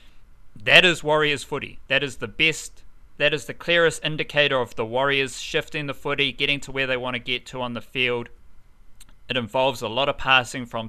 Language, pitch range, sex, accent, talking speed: English, 120-155 Hz, male, Australian, 205 wpm